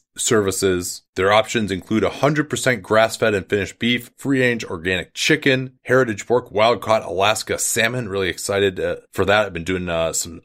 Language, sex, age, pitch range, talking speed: English, male, 30-49, 90-120 Hz, 155 wpm